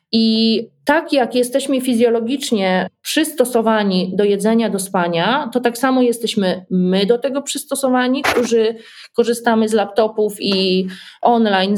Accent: native